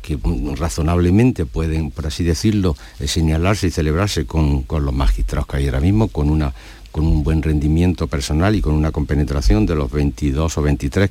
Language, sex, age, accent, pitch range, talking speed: Spanish, male, 60-79, Spanish, 75-95 Hz, 190 wpm